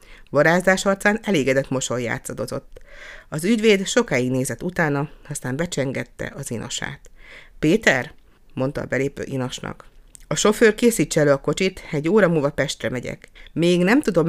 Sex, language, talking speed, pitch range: female, Hungarian, 135 wpm, 130-175 Hz